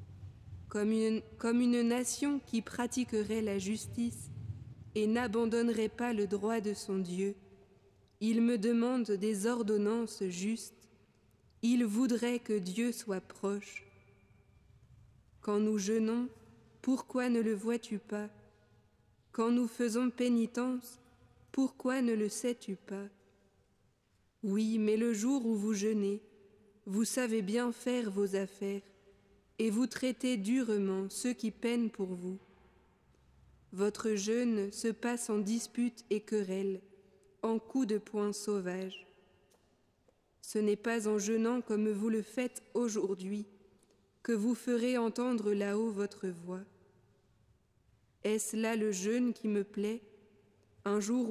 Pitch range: 195-230 Hz